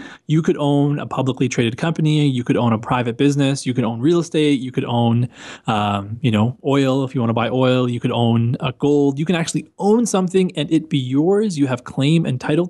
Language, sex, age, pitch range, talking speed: English, male, 20-39, 125-165 Hz, 235 wpm